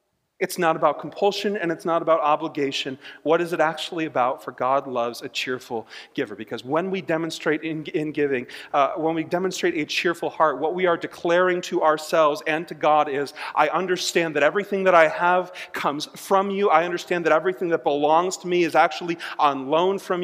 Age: 40-59